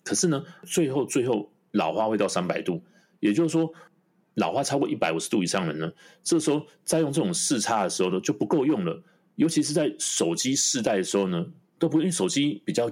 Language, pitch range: Chinese, 120-180 Hz